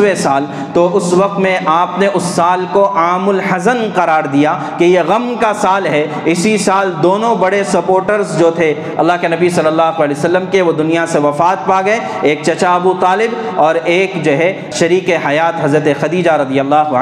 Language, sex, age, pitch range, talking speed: Urdu, male, 40-59, 165-205 Hz, 195 wpm